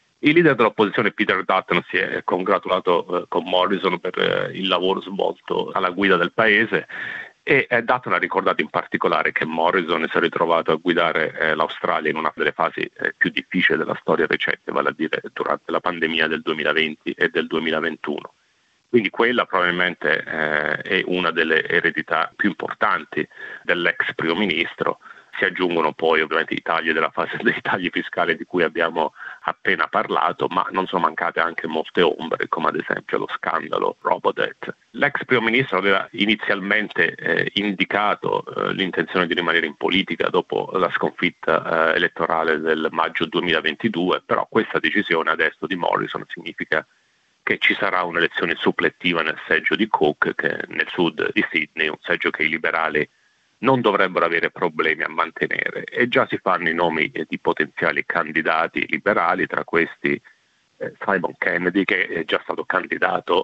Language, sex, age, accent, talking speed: Italian, male, 40-59, native, 155 wpm